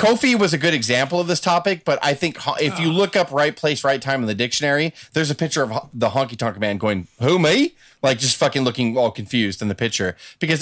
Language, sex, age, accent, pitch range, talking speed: English, male, 30-49, American, 115-160 Hz, 245 wpm